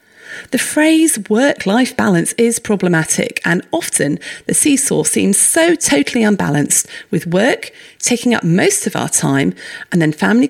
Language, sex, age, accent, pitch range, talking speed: English, female, 40-59, British, 170-280 Hz, 145 wpm